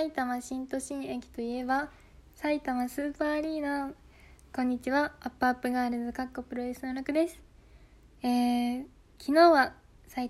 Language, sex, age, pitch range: Japanese, female, 20-39, 240-280 Hz